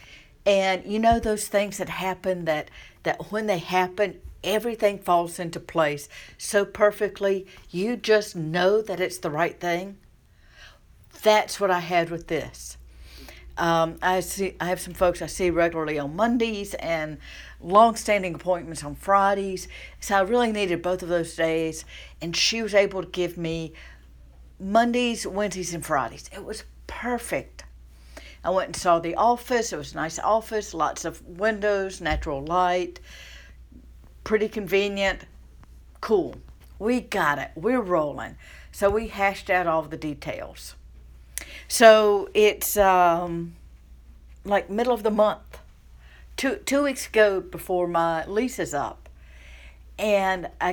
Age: 60-79